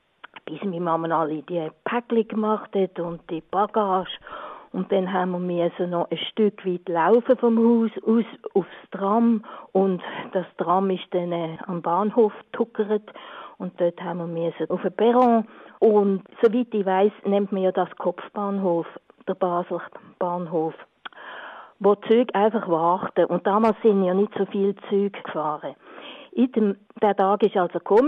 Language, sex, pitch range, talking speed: German, female, 180-220 Hz, 155 wpm